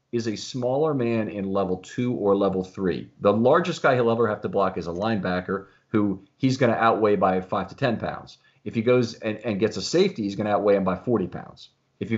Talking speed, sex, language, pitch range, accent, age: 240 wpm, male, English, 95-120 Hz, American, 40-59